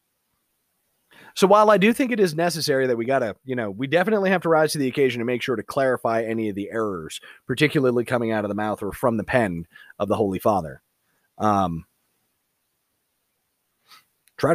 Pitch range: 125-185 Hz